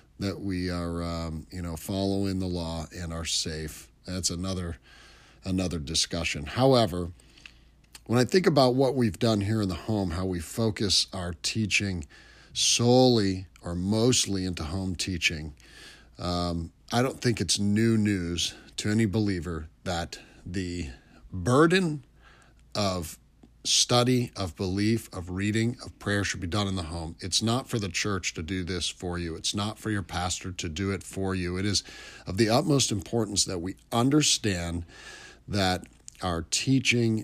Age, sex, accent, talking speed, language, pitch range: 40-59, male, American, 165 wpm, English, 90-110 Hz